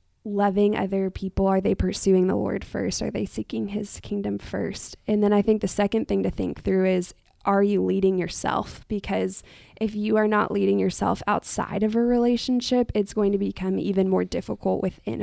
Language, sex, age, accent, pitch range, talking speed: English, female, 20-39, American, 185-215 Hz, 195 wpm